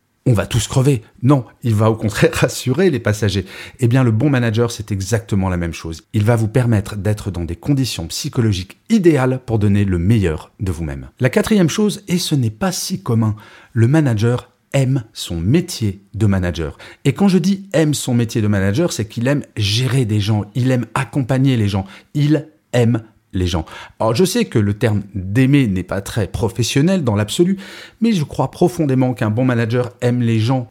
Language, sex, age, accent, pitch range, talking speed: French, male, 40-59, French, 105-135 Hz, 195 wpm